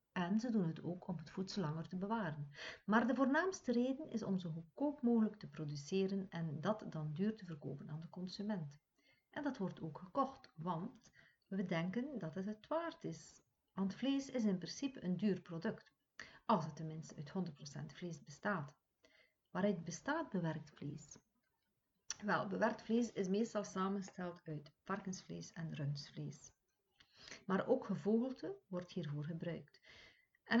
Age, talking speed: 50-69, 155 wpm